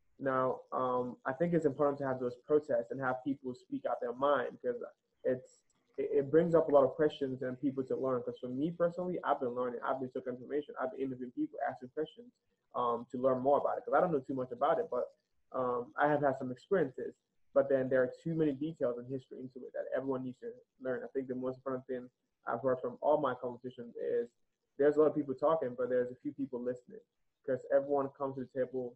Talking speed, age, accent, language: 235 wpm, 20-39, American, English